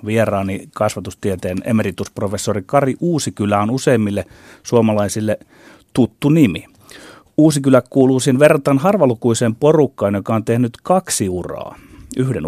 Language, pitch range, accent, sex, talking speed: Finnish, 105-130 Hz, native, male, 105 wpm